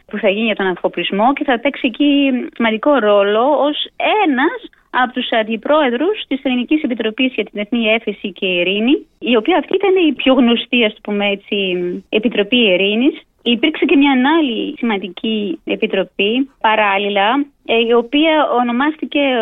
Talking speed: 150 wpm